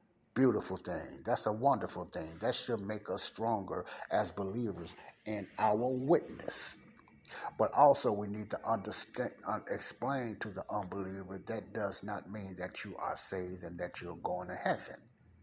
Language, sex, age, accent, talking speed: English, male, 60-79, American, 155 wpm